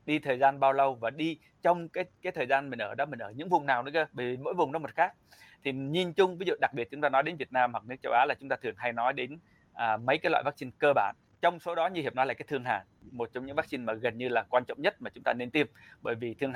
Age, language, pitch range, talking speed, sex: 20-39, Vietnamese, 120-150 Hz, 315 wpm, male